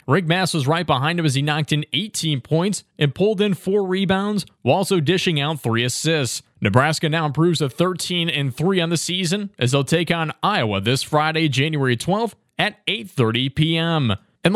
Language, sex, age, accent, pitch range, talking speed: English, male, 20-39, American, 140-180 Hz, 195 wpm